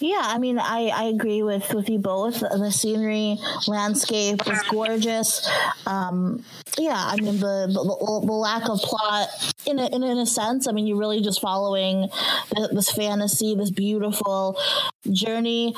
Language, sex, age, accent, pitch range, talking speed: English, female, 20-39, American, 200-235 Hz, 155 wpm